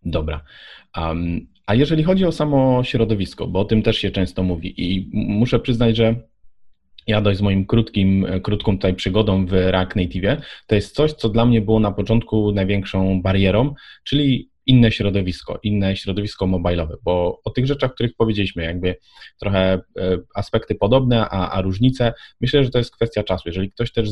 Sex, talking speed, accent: male, 170 wpm, native